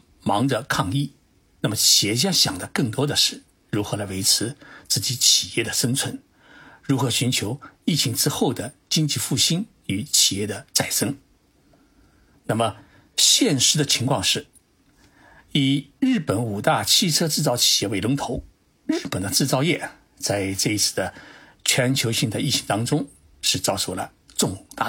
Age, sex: 60-79, male